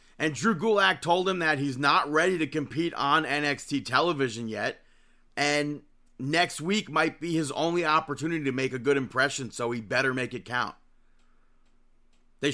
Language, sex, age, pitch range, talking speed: English, male, 30-49, 130-165 Hz, 165 wpm